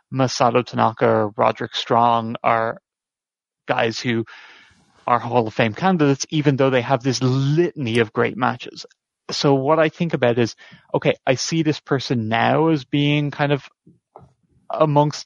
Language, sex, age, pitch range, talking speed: English, male, 20-39, 115-140 Hz, 155 wpm